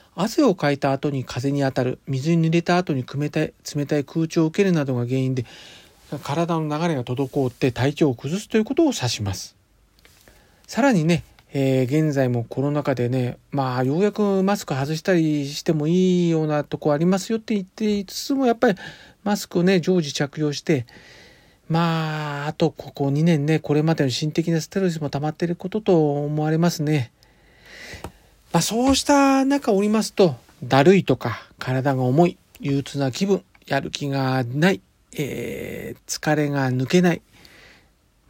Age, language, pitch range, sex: 40-59, Japanese, 135-180 Hz, male